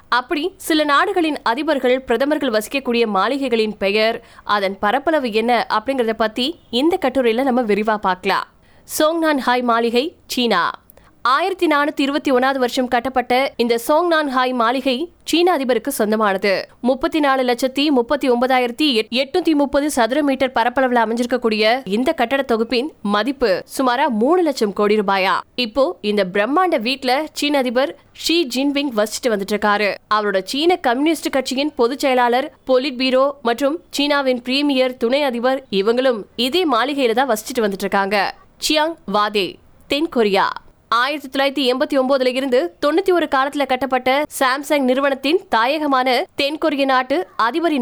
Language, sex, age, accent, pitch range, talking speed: Tamil, female, 20-39, native, 230-290 Hz, 60 wpm